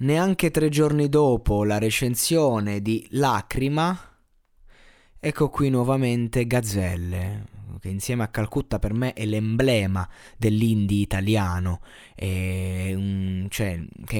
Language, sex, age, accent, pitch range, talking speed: Italian, male, 20-39, native, 100-130 Hz, 95 wpm